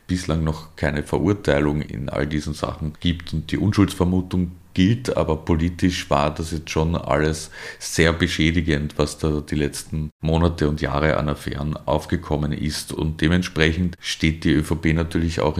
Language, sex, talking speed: German, male, 155 wpm